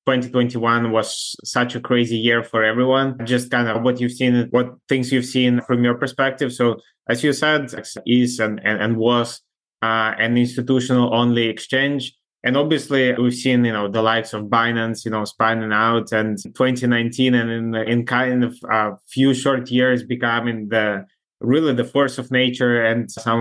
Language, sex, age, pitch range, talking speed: English, male, 20-39, 115-125 Hz, 175 wpm